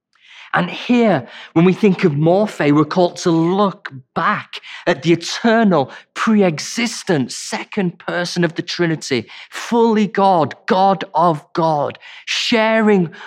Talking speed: 125 wpm